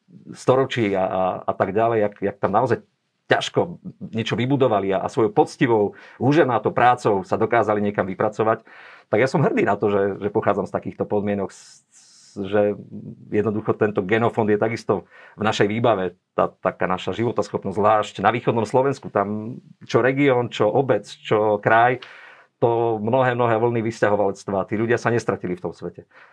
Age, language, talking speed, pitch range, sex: 50-69, Slovak, 165 wpm, 100-125 Hz, male